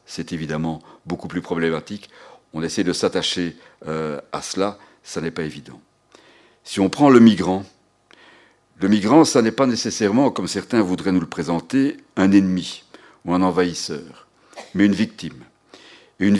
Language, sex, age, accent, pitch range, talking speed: French, male, 60-79, French, 90-115 Hz, 150 wpm